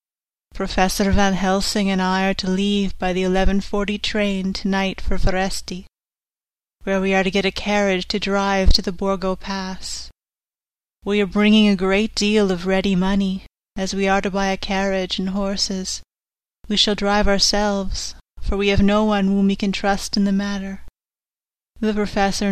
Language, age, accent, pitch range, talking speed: English, 30-49, American, 185-200 Hz, 170 wpm